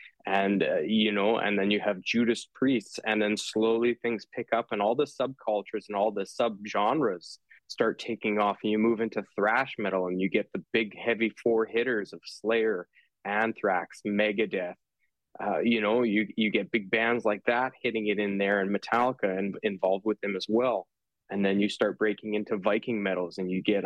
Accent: American